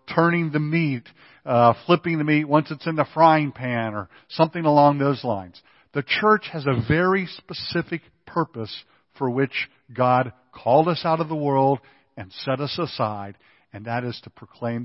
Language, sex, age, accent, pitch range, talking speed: English, male, 50-69, American, 115-150 Hz, 175 wpm